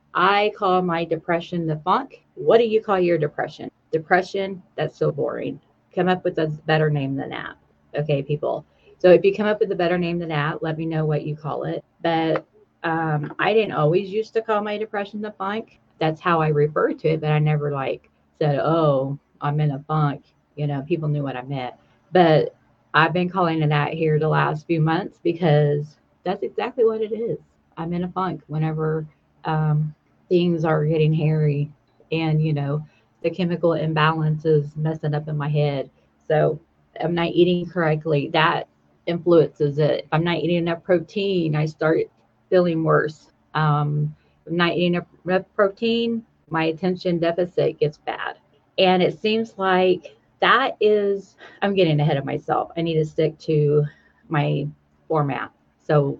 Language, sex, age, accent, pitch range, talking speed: English, female, 30-49, American, 150-185 Hz, 175 wpm